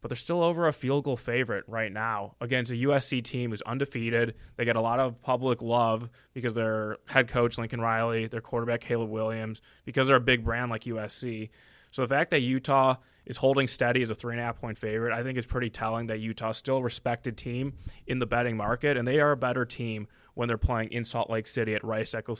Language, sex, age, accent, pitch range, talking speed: English, male, 20-39, American, 115-130 Hz, 235 wpm